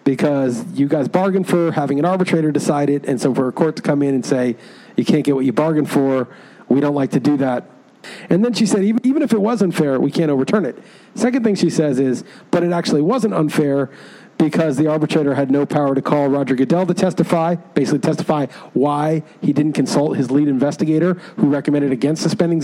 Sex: male